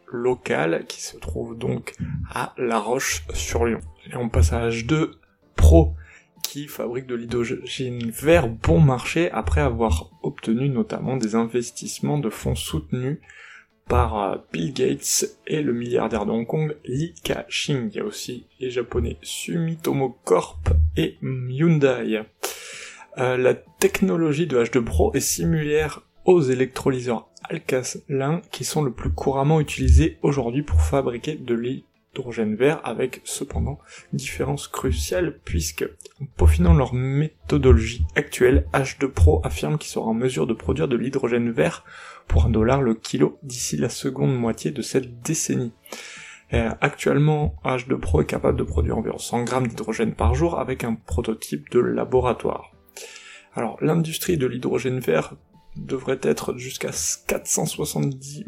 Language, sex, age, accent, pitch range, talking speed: French, male, 20-39, French, 85-135 Hz, 140 wpm